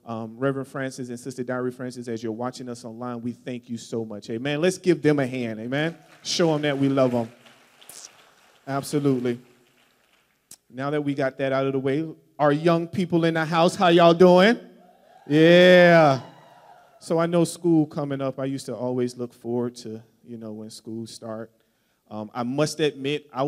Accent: American